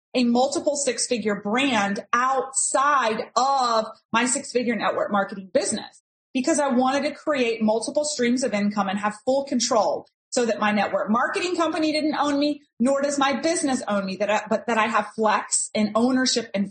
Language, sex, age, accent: English, female, 30-49, American